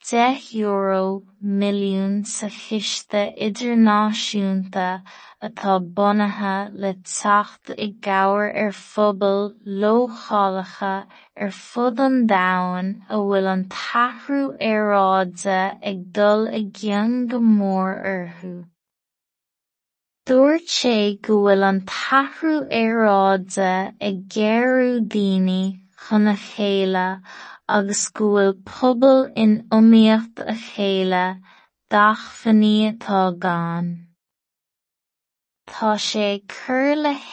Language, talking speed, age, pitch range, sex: English, 70 wpm, 20-39, 195-220 Hz, female